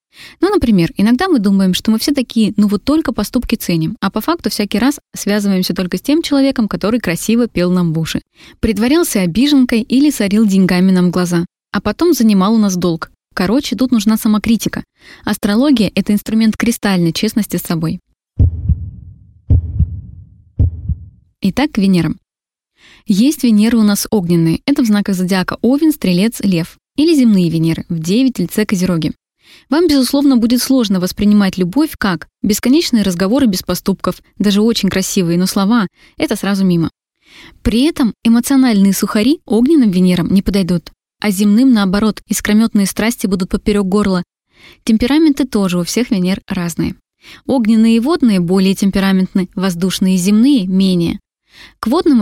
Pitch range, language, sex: 185-240 Hz, Russian, female